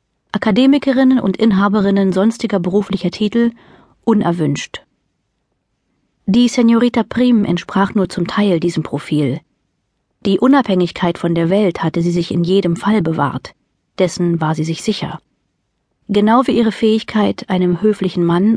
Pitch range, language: 180-215 Hz, German